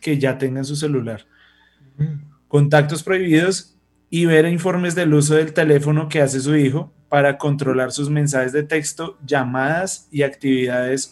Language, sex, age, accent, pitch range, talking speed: English, male, 20-39, Colombian, 130-150 Hz, 145 wpm